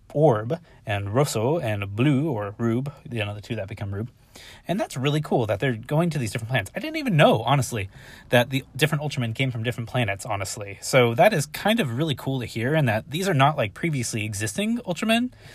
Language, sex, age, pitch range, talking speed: English, male, 30-49, 110-135 Hz, 225 wpm